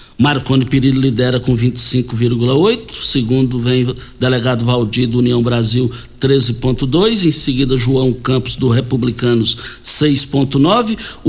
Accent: Brazilian